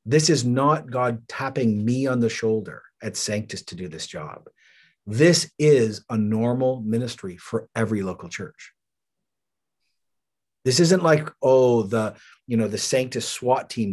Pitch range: 110-135 Hz